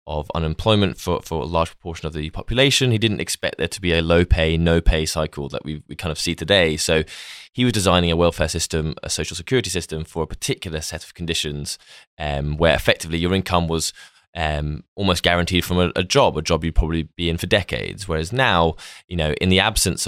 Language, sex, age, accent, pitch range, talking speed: English, male, 10-29, British, 80-95 Hz, 220 wpm